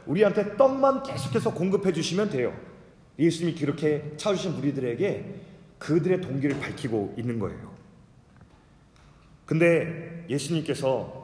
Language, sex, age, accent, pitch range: Korean, male, 30-49, native, 140-205 Hz